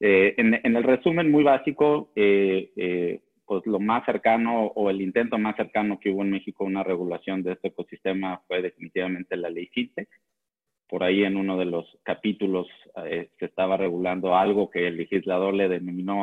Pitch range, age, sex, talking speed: 95-110 Hz, 30-49, male, 185 wpm